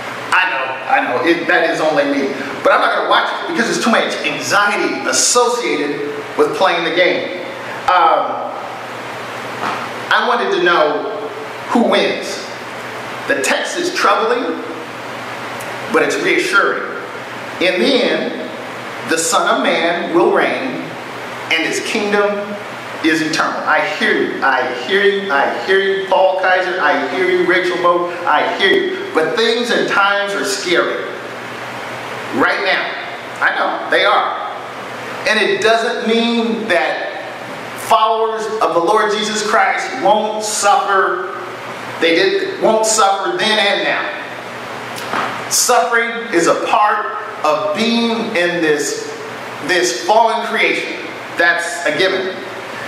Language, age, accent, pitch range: English, 30-49, American, 180-230 Hz